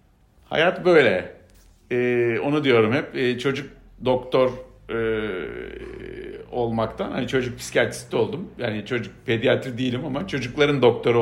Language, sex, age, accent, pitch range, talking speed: Turkish, male, 50-69, native, 110-130 Hz, 120 wpm